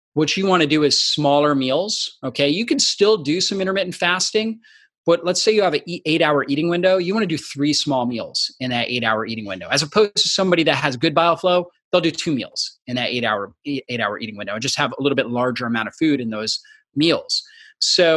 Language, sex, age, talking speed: English, male, 30-49, 230 wpm